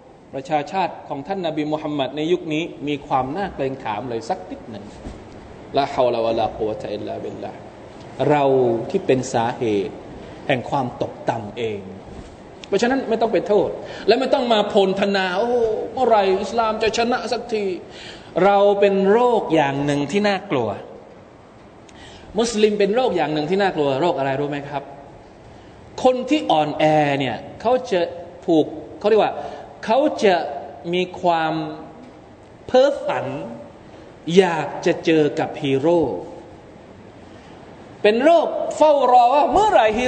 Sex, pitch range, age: male, 145-220 Hz, 20-39